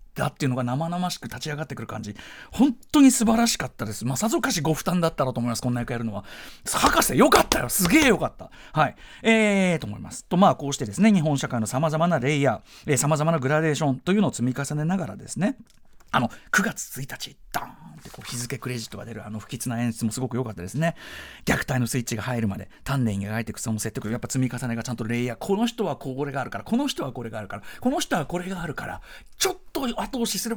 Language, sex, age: Japanese, male, 40-59